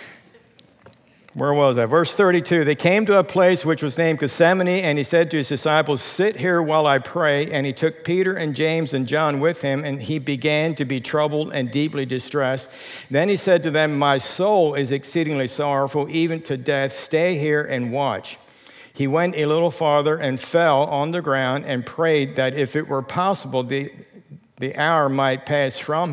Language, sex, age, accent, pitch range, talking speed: English, male, 50-69, American, 135-165 Hz, 195 wpm